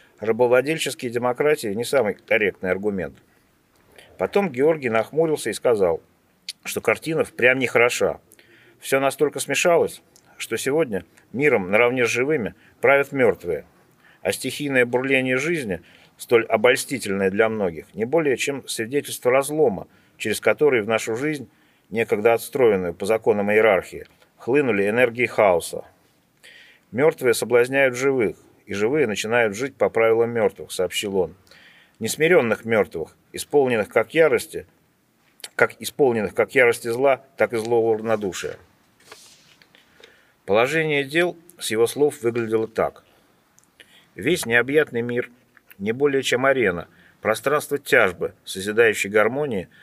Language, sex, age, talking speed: Russian, male, 40-59, 115 wpm